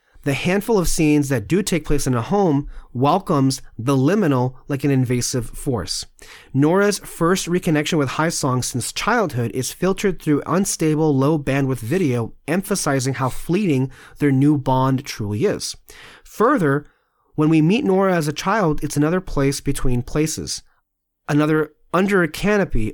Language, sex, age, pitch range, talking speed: English, male, 30-49, 135-165 Hz, 145 wpm